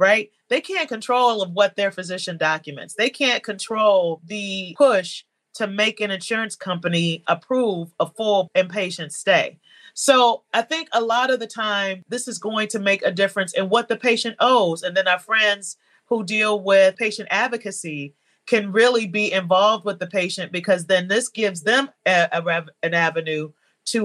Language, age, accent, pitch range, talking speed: English, 30-49, American, 170-220 Hz, 170 wpm